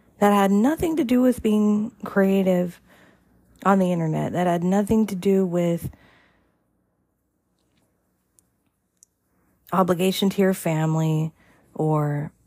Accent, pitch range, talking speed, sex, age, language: American, 165-215 Hz, 105 wpm, female, 40-59, English